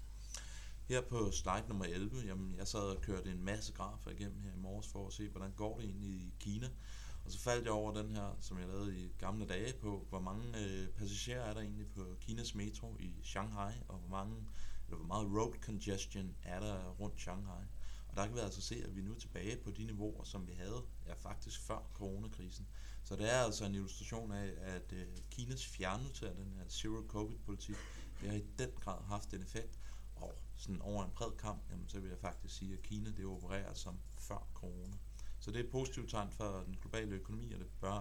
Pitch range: 95-105 Hz